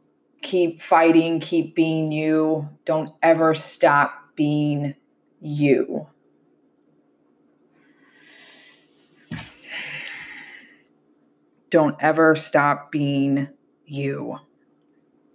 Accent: American